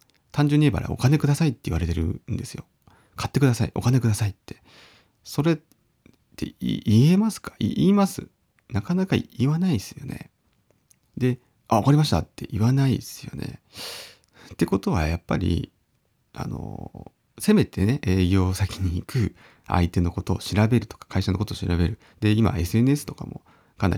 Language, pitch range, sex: Japanese, 90-130 Hz, male